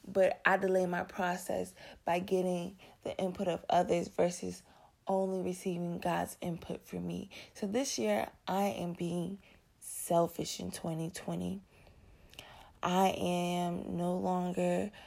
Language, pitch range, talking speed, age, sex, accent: English, 170-195 Hz, 125 wpm, 20-39, female, American